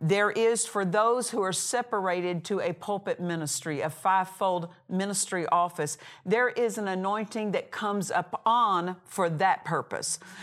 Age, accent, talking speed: 50-69, American, 150 wpm